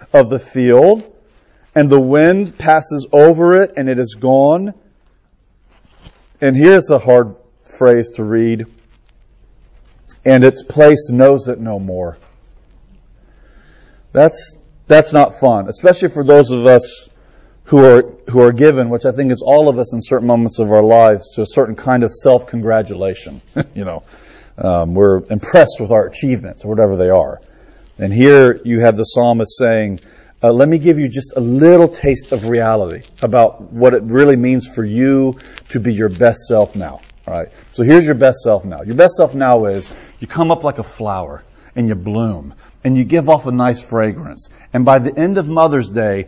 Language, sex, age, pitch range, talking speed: English, male, 40-59, 110-140 Hz, 180 wpm